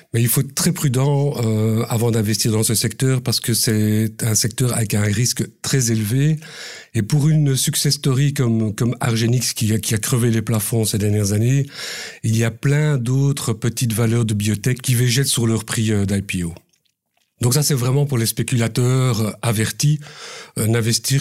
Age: 50-69